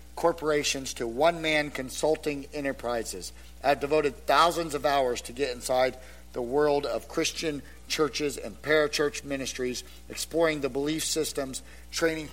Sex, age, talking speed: male, 50-69, 125 wpm